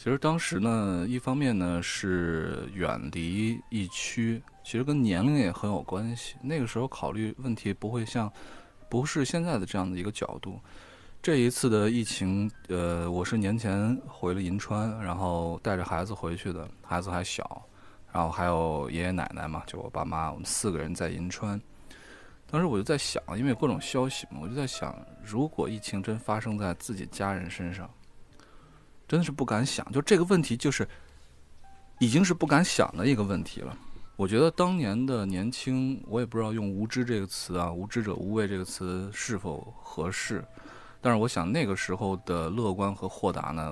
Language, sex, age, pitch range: Chinese, male, 20-39, 90-120 Hz